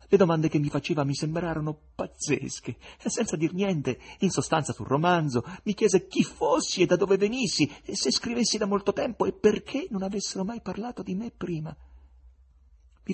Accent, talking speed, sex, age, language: native, 185 wpm, male, 40-59, Italian